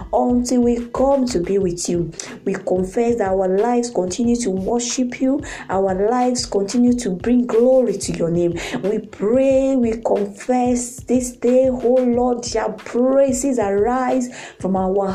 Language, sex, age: English, female, 20-39